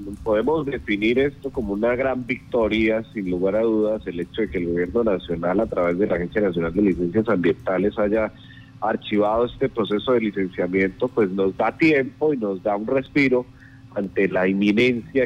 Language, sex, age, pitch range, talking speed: Spanish, male, 30-49, 100-130 Hz, 175 wpm